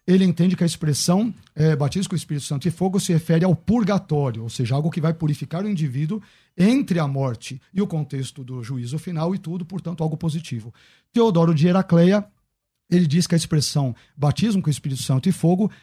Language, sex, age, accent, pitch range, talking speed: Portuguese, male, 50-69, Brazilian, 150-180 Hz, 200 wpm